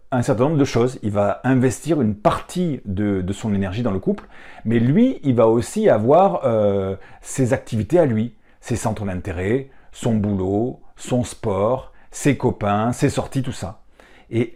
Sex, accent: male, French